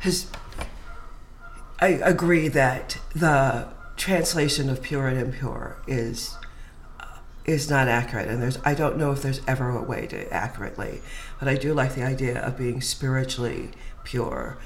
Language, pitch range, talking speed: English, 120-145 Hz, 145 wpm